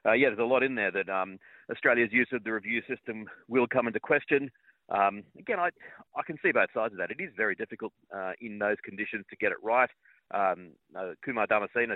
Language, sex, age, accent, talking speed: English, male, 40-59, Australian, 225 wpm